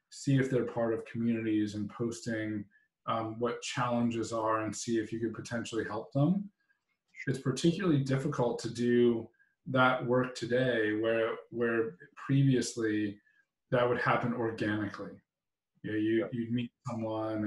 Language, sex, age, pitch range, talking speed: English, male, 20-39, 110-130 Hz, 140 wpm